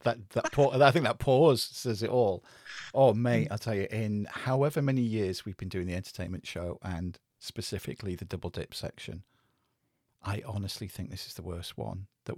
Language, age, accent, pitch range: English, 40-59, British, 100-140 Hz